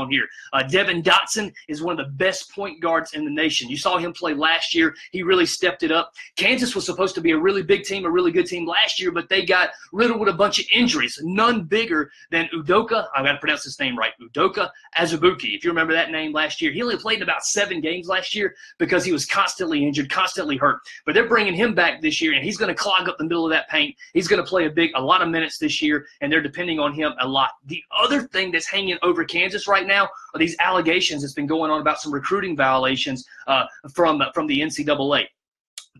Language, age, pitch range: English, 30-49, 155-195 Hz